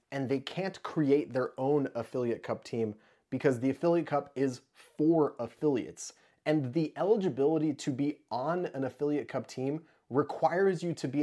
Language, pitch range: English, 125-160 Hz